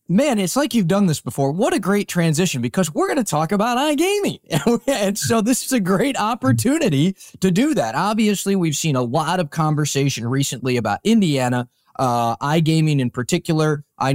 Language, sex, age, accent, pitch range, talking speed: English, male, 20-39, American, 135-190 Hz, 180 wpm